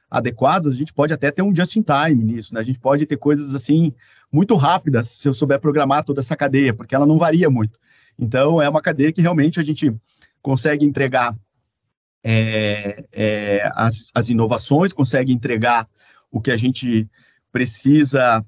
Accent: Brazilian